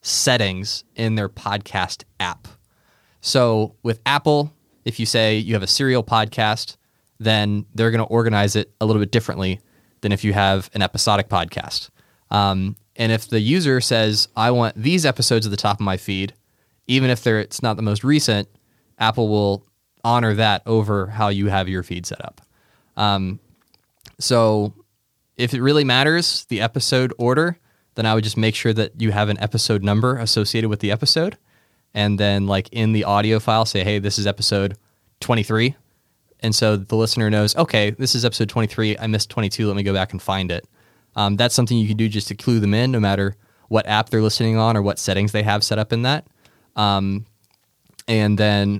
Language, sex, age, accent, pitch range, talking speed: English, male, 20-39, American, 100-120 Hz, 195 wpm